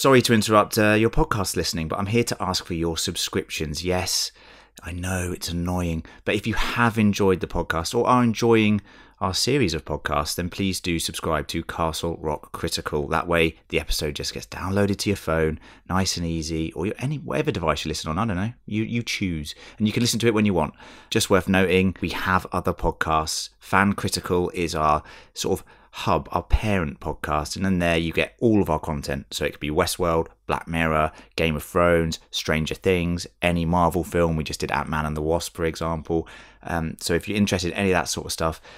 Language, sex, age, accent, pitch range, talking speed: English, male, 30-49, British, 80-105 Hz, 215 wpm